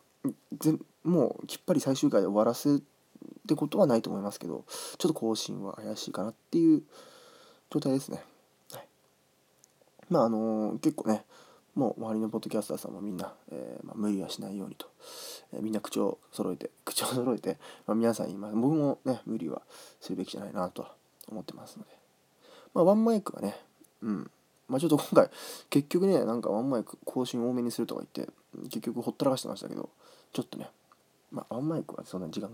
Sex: male